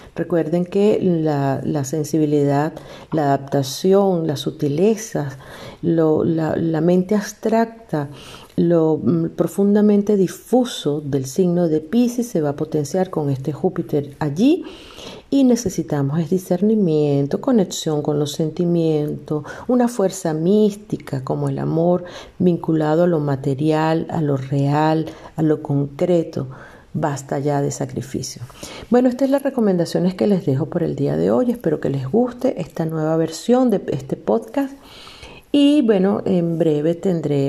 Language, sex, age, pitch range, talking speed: Spanish, female, 50-69, 150-200 Hz, 135 wpm